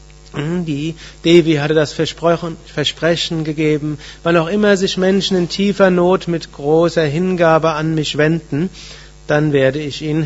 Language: German